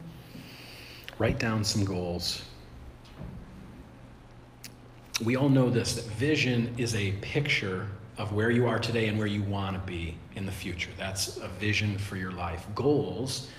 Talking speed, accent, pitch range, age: 150 wpm, American, 100-125 Hz, 40-59